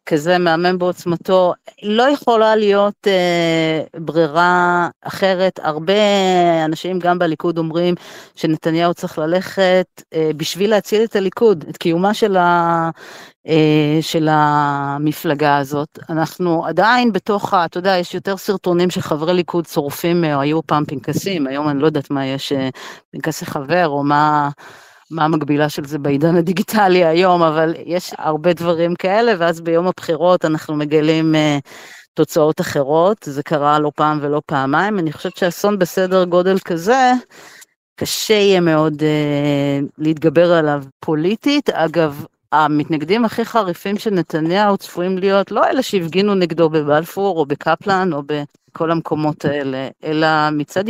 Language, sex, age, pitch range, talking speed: Hebrew, female, 40-59, 155-190 Hz, 135 wpm